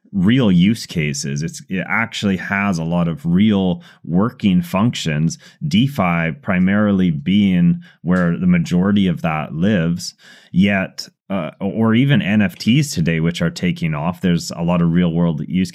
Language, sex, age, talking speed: English, male, 30-49, 150 wpm